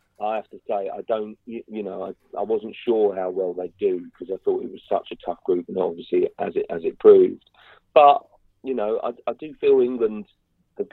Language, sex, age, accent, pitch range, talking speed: English, male, 40-59, British, 360-425 Hz, 225 wpm